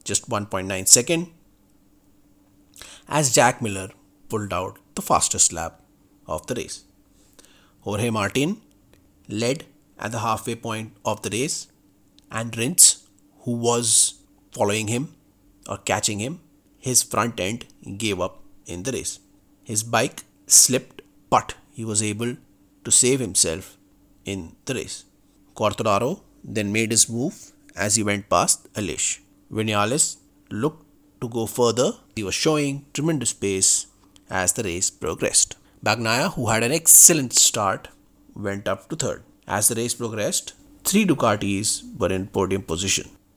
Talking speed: 140 wpm